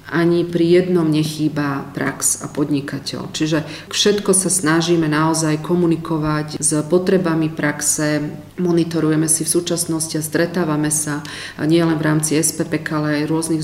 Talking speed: 130 wpm